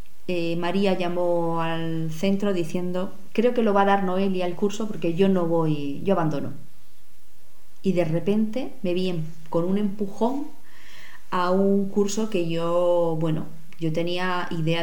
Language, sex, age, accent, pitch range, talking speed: Spanish, female, 20-39, Spanish, 160-195 Hz, 160 wpm